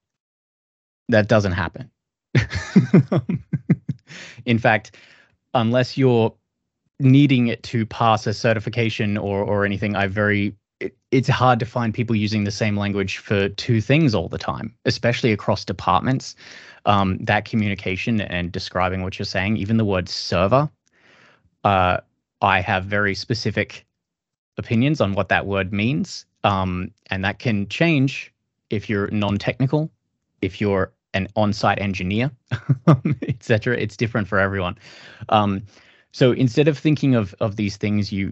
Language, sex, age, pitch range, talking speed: English, male, 20-39, 95-115 Hz, 140 wpm